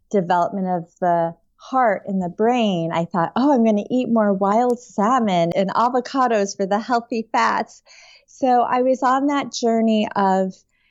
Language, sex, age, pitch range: English, female, 30-49, 180-220 Hz